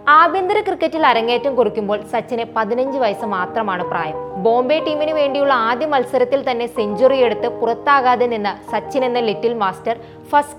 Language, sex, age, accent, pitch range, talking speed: Malayalam, female, 20-39, native, 215-270 Hz, 135 wpm